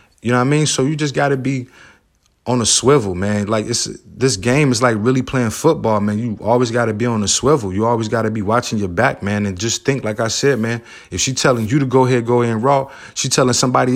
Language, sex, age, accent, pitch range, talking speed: English, male, 20-39, American, 110-135 Hz, 260 wpm